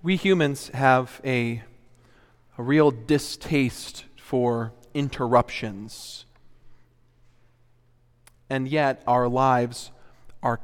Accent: American